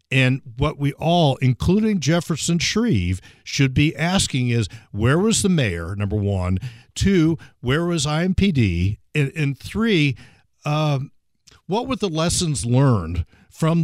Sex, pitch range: male, 115-170 Hz